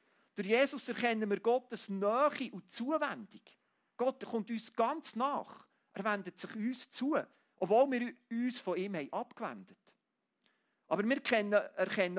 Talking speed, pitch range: 140 wpm, 185-250 Hz